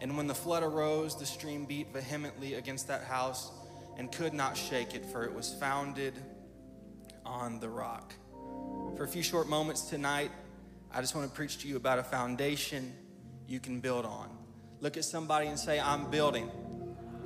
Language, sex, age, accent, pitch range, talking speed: English, male, 20-39, American, 130-160 Hz, 175 wpm